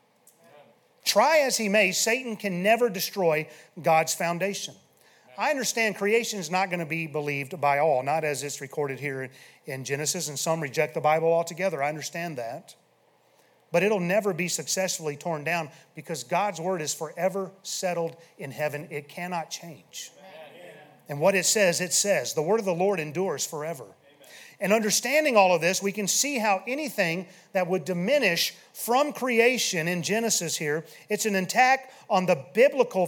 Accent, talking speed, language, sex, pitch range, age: American, 165 wpm, English, male, 160-200 Hz, 40-59